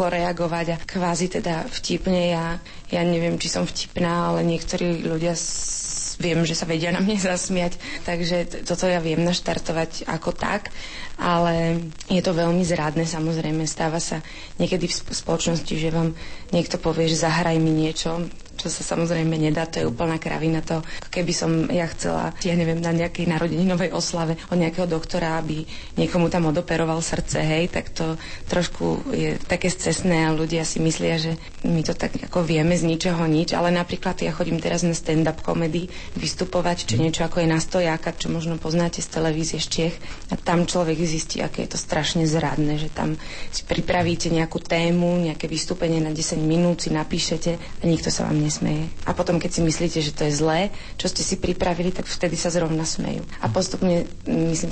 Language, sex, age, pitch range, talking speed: Slovak, female, 30-49, 160-175 Hz, 175 wpm